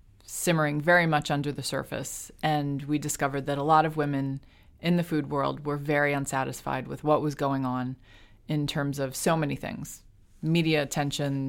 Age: 30-49